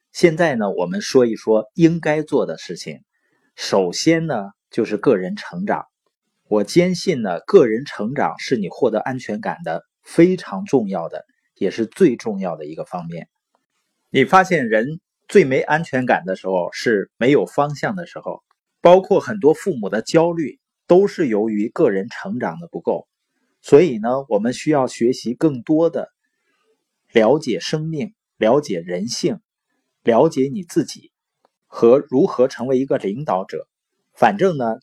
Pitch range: 130-190 Hz